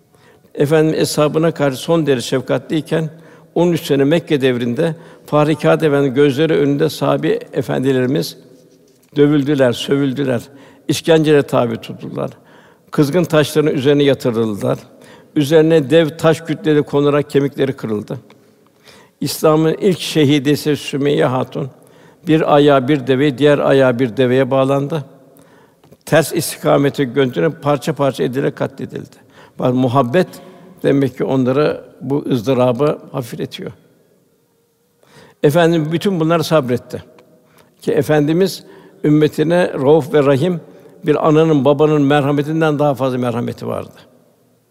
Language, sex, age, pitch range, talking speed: Turkish, male, 60-79, 135-155 Hz, 105 wpm